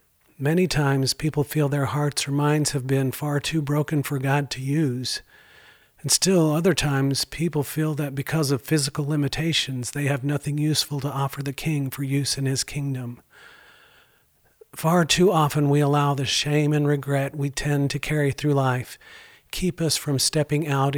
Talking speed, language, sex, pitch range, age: 175 wpm, English, male, 140-160 Hz, 50-69